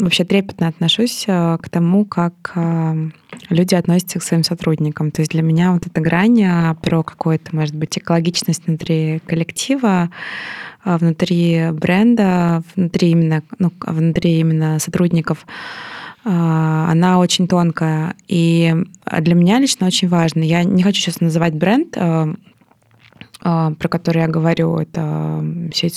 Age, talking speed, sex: 20-39, 120 wpm, female